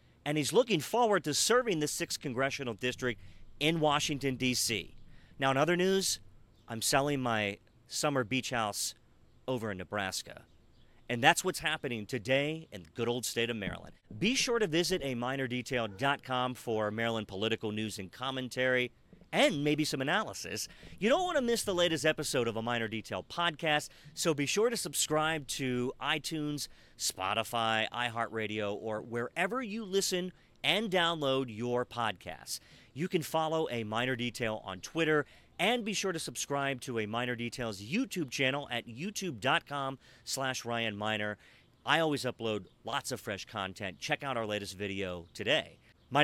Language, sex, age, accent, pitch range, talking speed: English, male, 40-59, American, 115-155 Hz, 155 wpm